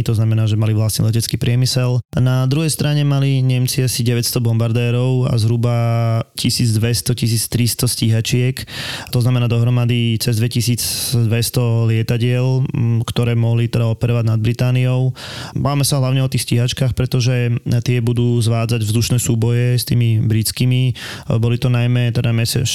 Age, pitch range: 20-39, 115-125 Hz